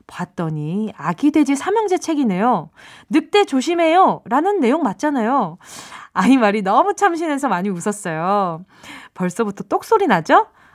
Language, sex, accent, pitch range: Korean, female, native, 195-330 Hz